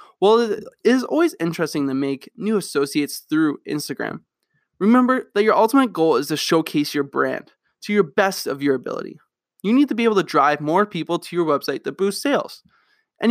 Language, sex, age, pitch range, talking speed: English, male, 20-39, 150-210 Hz, 195 wpm